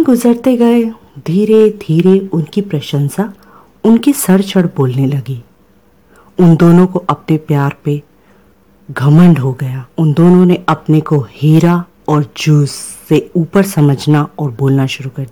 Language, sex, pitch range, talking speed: Punjabi, female, 140-190 Hz, 135 wpm